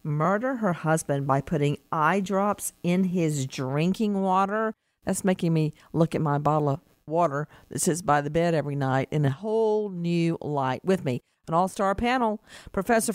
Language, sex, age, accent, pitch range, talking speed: English, female, 50-69, American, 155-220 Hz, 175 wpm